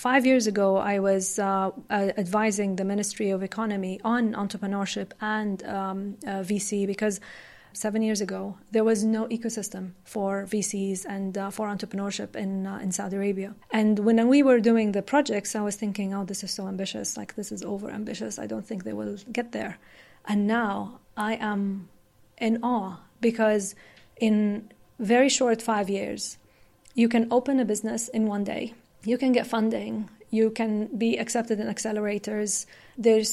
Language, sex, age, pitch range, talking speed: English, female, 30-49, 200-225 Hz, 170 wpm